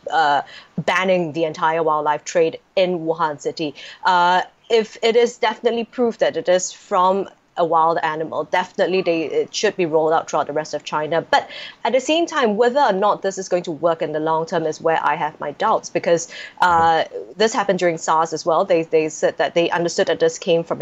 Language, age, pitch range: English, 20-39, 165-225 Hz